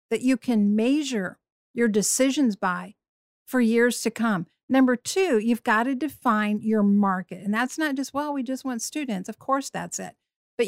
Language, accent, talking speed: English, American, 185 wpm